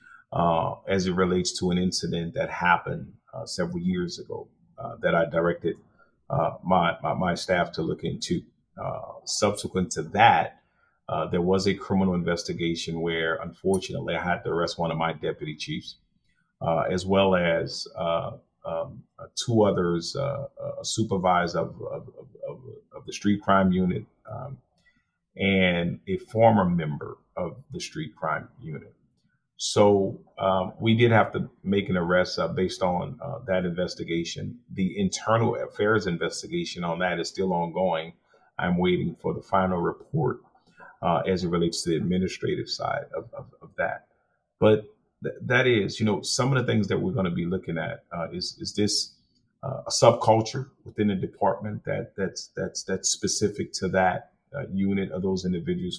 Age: 40-59